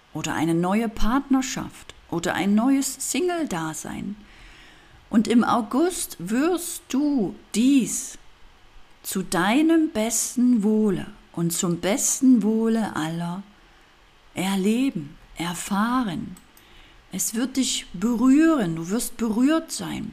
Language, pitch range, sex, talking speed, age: German, 195-260 Hz, female, 100 wpm, 50-69